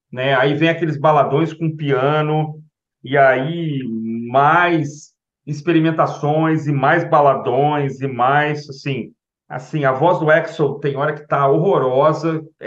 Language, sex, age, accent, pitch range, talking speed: Portuguese, male, 40-59, Brazilian, 140-170 Hz, 130 wpm